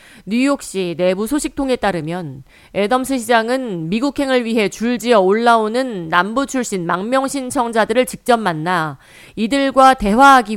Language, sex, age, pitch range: Korean, female, 40-59, 185-255 Hz